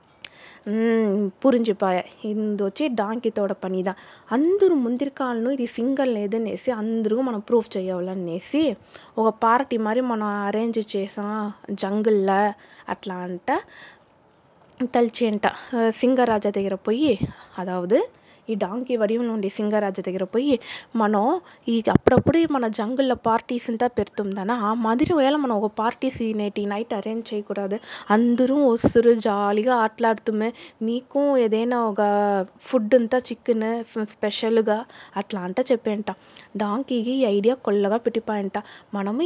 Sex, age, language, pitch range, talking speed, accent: female, 20-39, Telugu, 205-240 Hz, 115 wpm, native